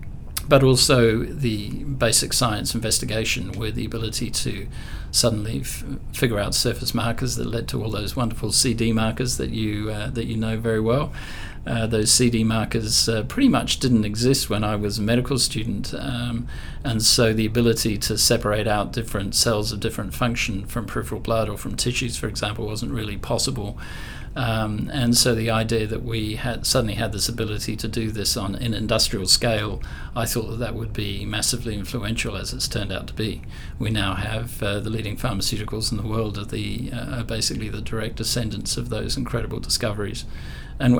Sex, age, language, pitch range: male, 50-69, English, 105-120 Hz